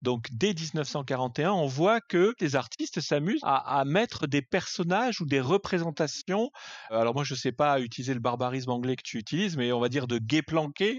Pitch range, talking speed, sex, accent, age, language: 125-165 Hz, 200 wpm, male, French, 40-59, French